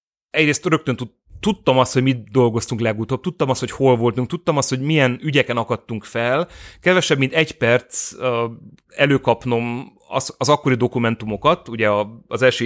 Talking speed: 150 wpm